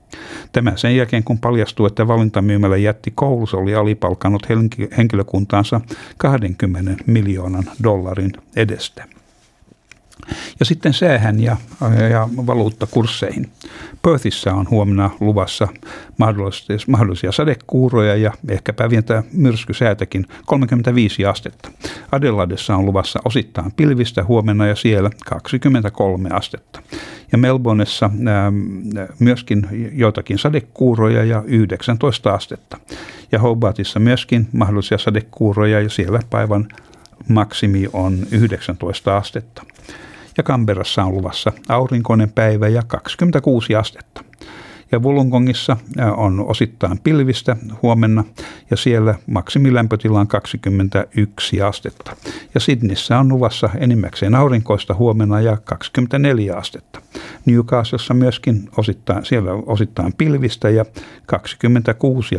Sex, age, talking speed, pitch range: male, 60-79, 105 wpm, 100-120 Hz